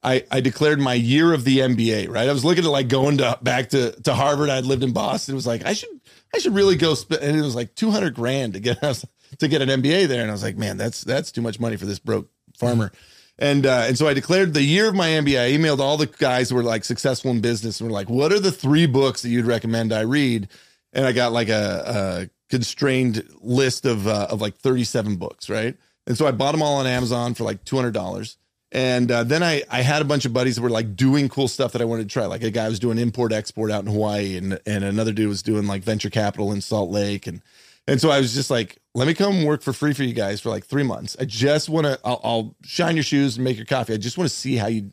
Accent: American